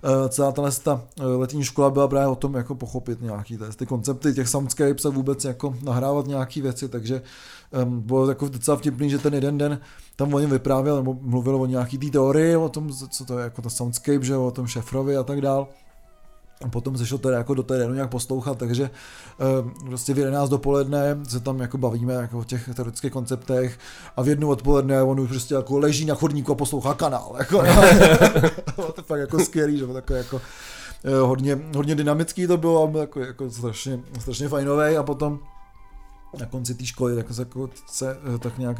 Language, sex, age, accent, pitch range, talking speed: Czech, male, 20-39, native, 125-145 Hz, 195 wpm